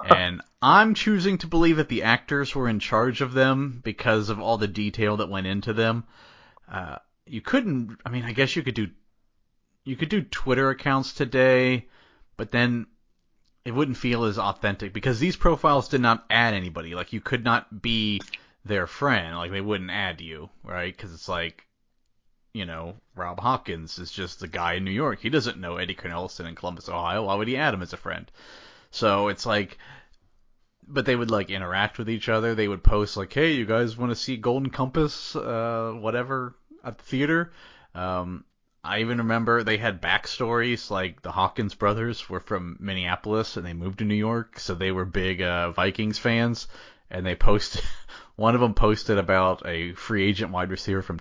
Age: 30-49